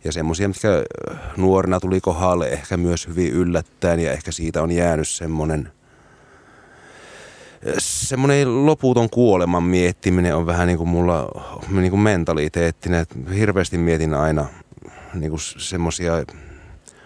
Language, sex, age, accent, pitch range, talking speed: Finnish, male, 30-49, native, 85-95 Hz, 110 wpm